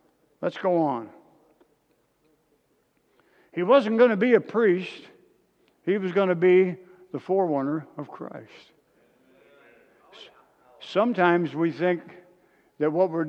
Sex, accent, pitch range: male, American, 140-190 Hz